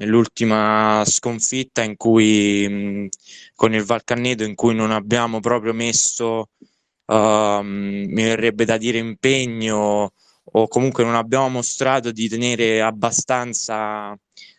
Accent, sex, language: native, male, Italian